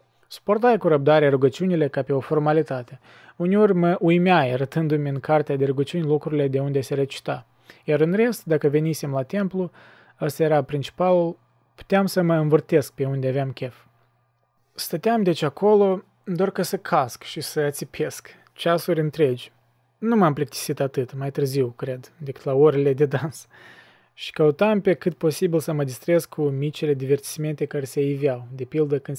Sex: male